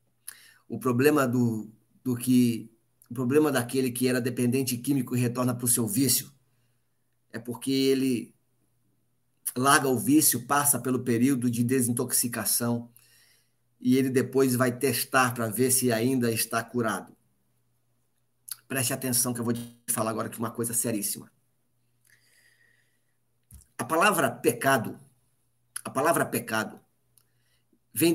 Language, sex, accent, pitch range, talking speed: Portuguese, male, Brazilian, 120-145 Hz, 125 wpm